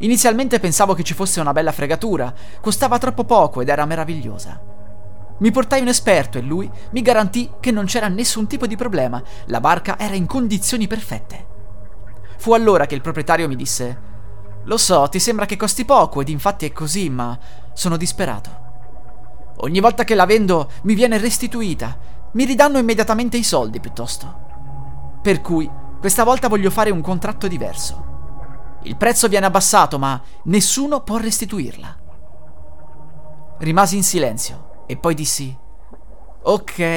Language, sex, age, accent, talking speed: Italian, male, 30-49, native, 155 wpm